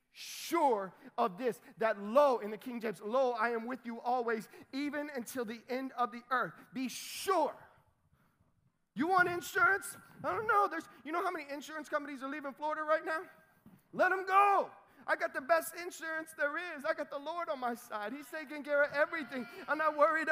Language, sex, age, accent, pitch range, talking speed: English, male, 30-49, American, 215-295 Hz, 200 wpm